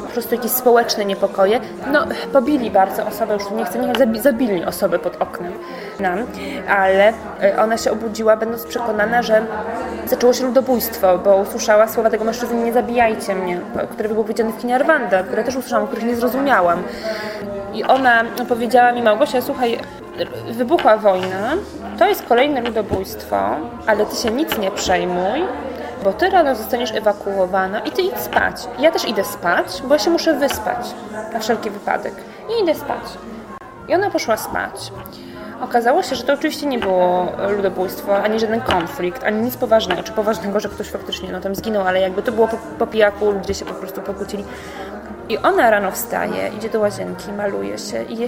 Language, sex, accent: Polish, female, native